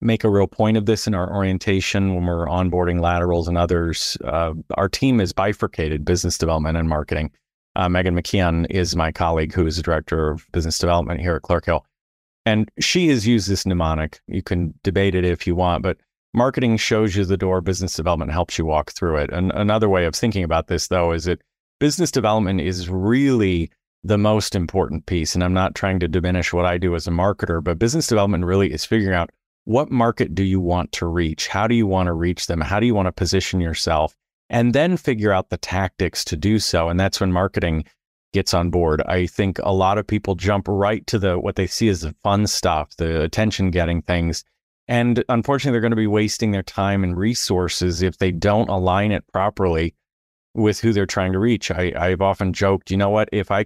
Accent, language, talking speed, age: American, English, 215 wpm, 30-49